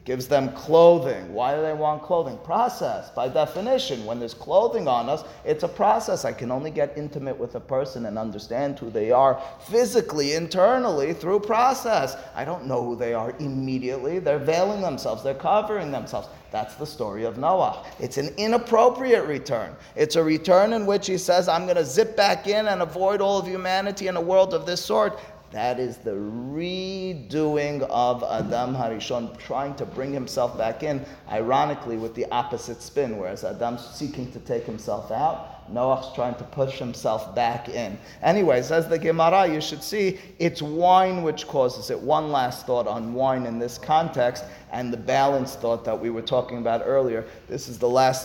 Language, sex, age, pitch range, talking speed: English, male, 30-49, 120-170 Hz, 185 wpm